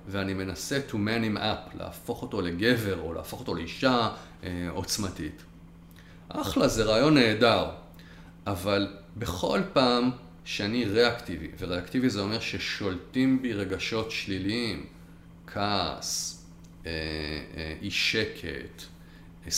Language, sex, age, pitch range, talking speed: Hebrew, male, 40-59, 85-105 Hz, 105 wpm